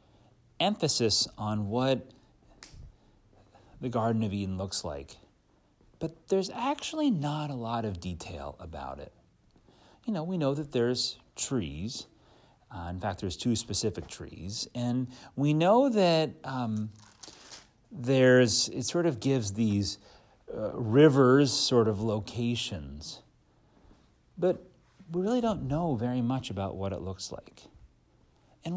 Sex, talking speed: male, 130 wpm